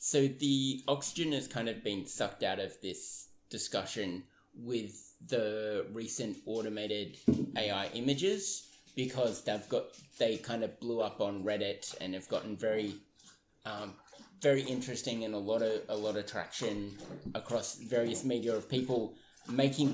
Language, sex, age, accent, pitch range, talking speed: English, male, 20-39, Australian, 110-140 Hz, 145 wpm